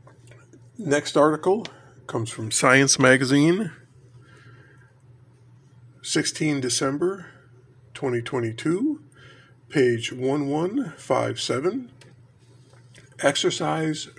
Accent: American